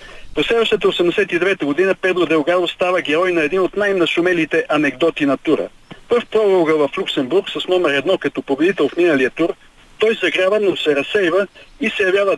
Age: 50-69